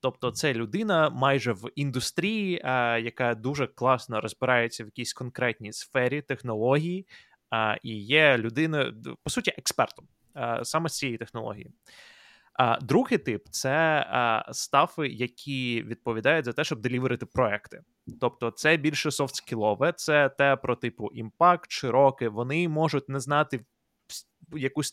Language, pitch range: Ukrainian, 120-155 Hz